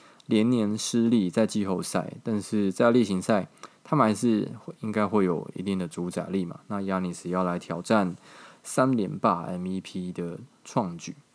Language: Chinese